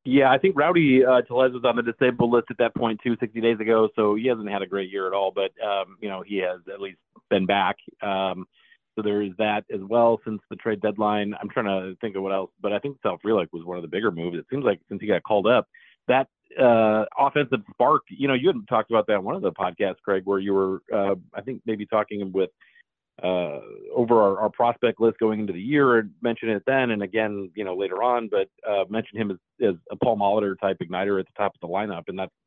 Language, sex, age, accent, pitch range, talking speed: English, male, 40-59, American, 95-115 Hz, 255 wpm